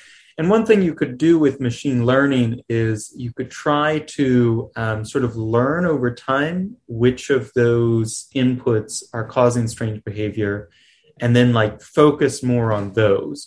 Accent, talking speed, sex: American, 155 wpm, male